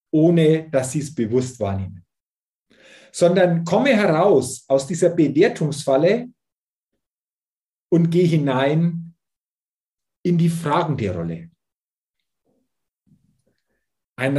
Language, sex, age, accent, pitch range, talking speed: German, male, 40-59, German, 140-190 Hz, 90 wpm